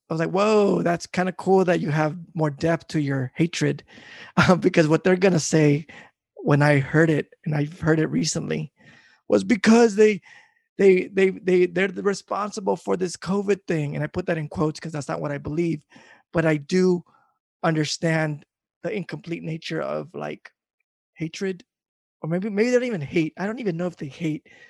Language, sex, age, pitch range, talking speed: English, male, 20-39, 150-190 Hz, 195 wpm